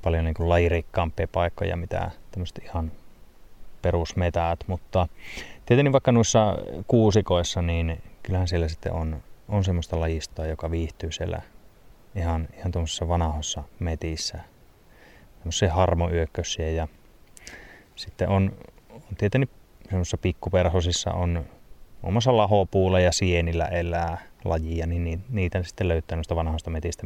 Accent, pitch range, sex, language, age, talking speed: native, 80-95 Hz, male, Finnish, 20-39, 110 wpm